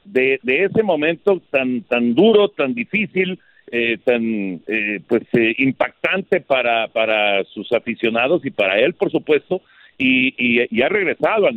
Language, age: Spanish, 50-69